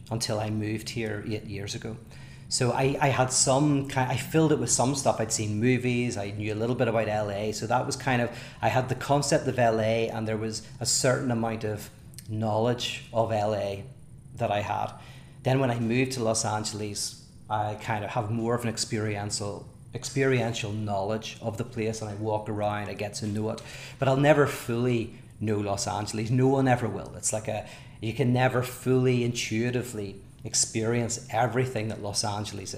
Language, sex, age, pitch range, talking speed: English, male, 30-49, 110-130 Hz, 195 wpm